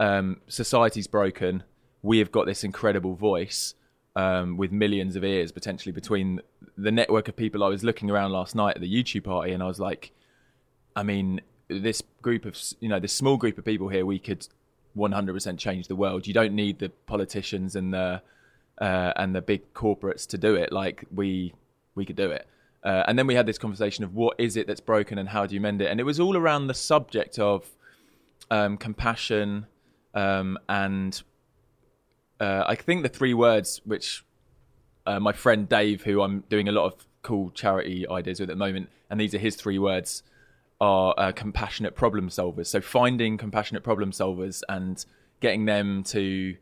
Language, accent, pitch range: English, British, 95-110 Hz